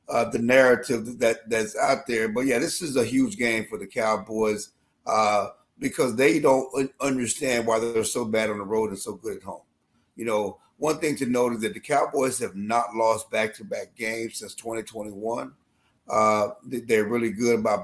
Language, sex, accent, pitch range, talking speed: English, male, American, 110-120 Hz, 190 wpm